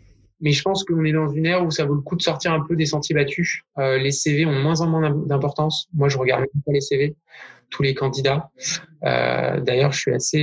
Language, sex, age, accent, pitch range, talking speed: French, male, 20-39, French, 140-165 Hz, 240 wpm